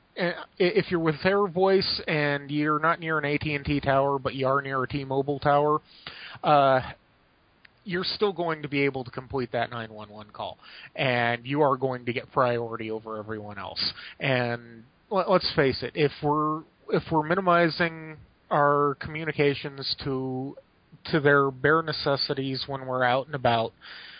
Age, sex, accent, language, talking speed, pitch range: 30-49, male, American, English, 155 wpm, 130-155 Hz